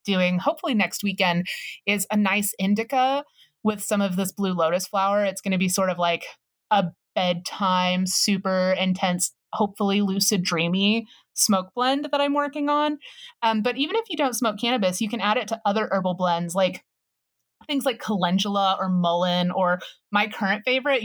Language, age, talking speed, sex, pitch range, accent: English, 30-49, 175 wpm, female, 180-225 Hz, American